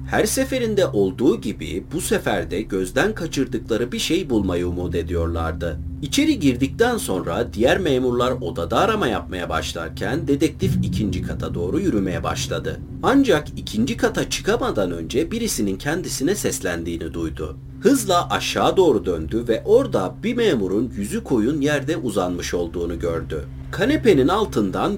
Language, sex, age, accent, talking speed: Turkish, male, 40-59, native, 130 wpm